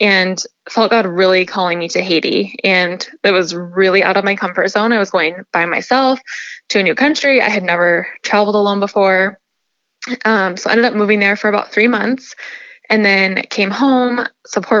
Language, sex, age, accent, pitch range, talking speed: English, female, 10-29, American, 185-220 Hz, 195 wpm